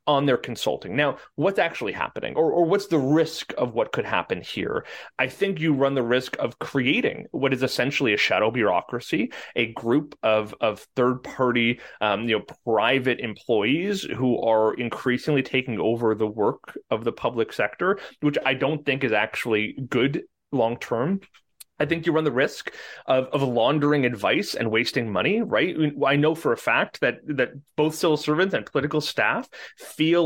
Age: 30-49